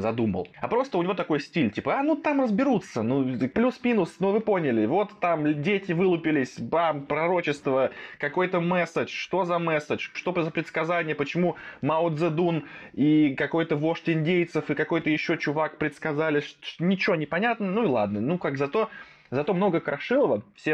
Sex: male